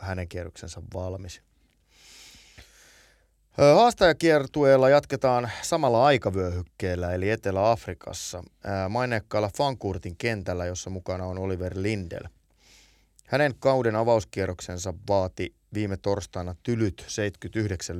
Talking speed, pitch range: 85 wpm, 90-110 Hz